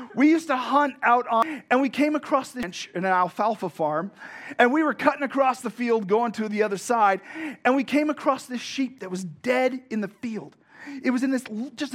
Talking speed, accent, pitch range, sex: 220 wpm, American, 205-295 Hz, male